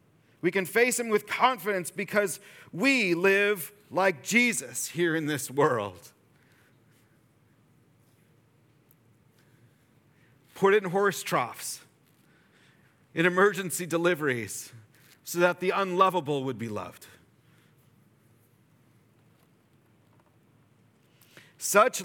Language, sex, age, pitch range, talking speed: English, male, 40-59, 125-180 Hz, 80 wpm